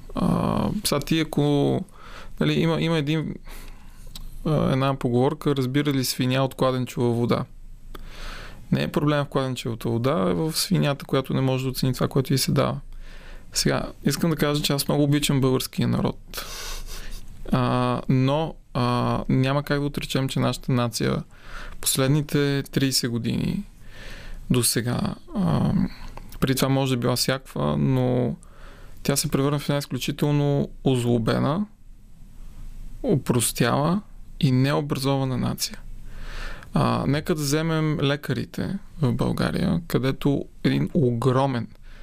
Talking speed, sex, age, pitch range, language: 130 wpm, male, 20-39, 125-150 Hz, Bulgarian